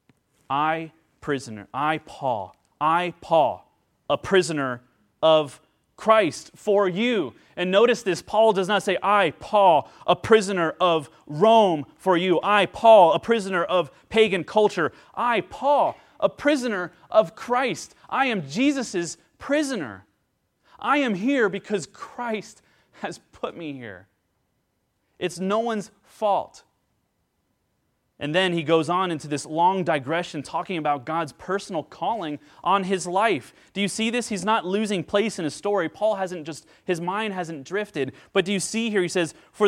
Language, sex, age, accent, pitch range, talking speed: English, male, 30-49, American, 155-210 Hz, 150 wpm